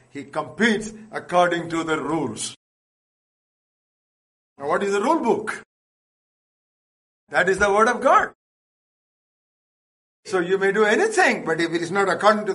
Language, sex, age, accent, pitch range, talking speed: English, male, 50-69, Indian, 170-220 Hz, 145 wpm